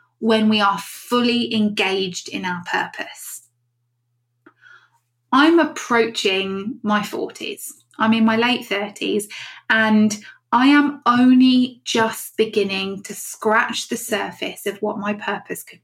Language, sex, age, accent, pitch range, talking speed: English, female, 20-39, British, 195-235 Hz, 120 wpm